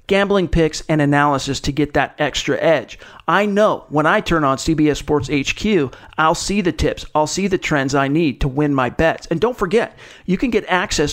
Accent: American